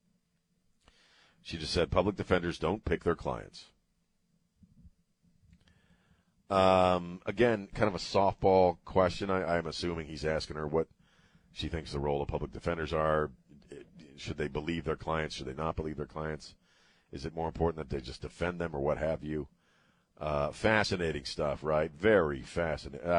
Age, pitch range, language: 50-69, 80-110 Hz, English